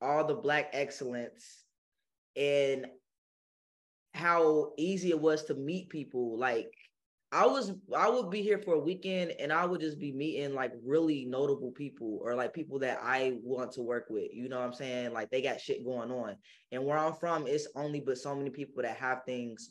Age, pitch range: 20-39, 125-155 Hz